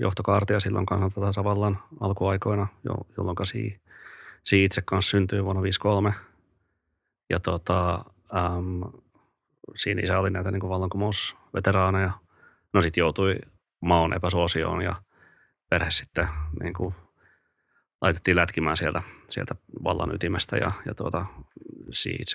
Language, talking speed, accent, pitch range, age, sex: Finnish, 105 wpm, native, 85-100 Hz, 30-49, male